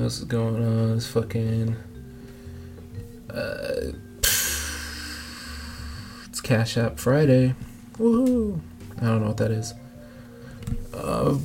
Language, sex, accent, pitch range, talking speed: English, male, American, 105-120 Hz, 100 wpm